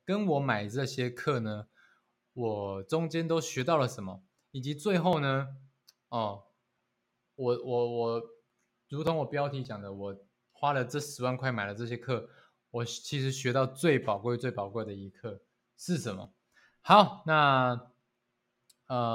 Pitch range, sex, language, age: 110-140 Hz, male, Chinese, 20-39